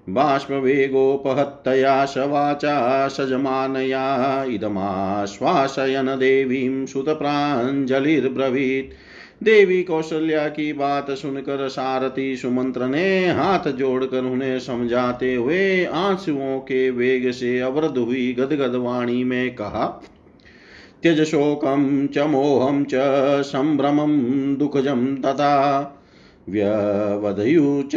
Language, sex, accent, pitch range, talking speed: Hindi, male, native, 130-145 Hz, 85 wpm